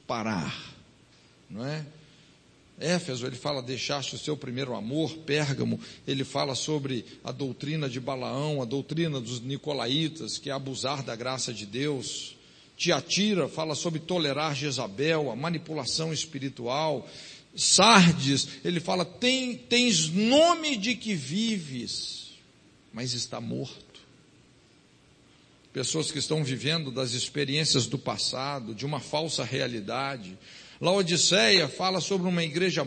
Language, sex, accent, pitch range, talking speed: Portuguese, male, Brazilian, 135-200 Hz, 120 wpm